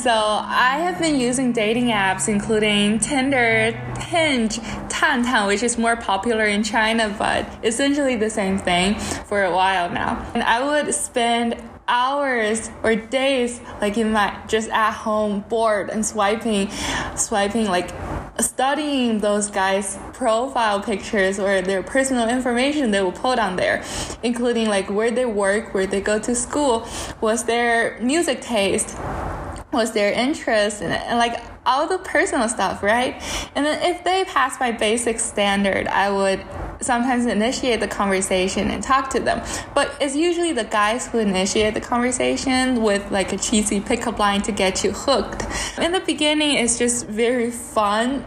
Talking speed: 160 wpm